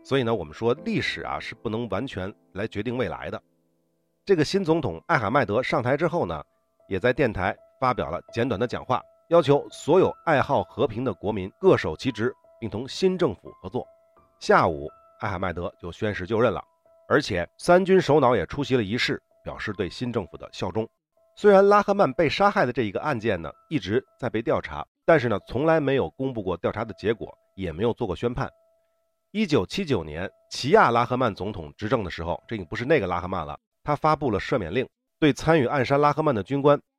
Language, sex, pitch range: Chinese, male, 110-175 Hz